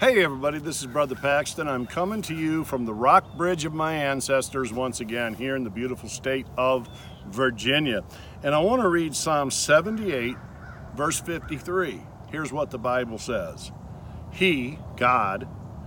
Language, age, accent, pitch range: English, 50-69, American, 125-160 Hz